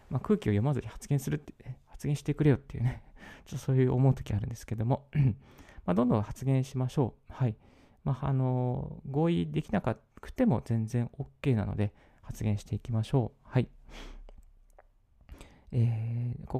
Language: Japanese